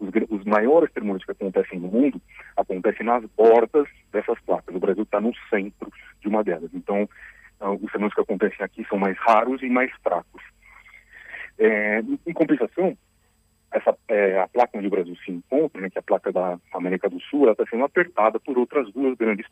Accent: Brazilian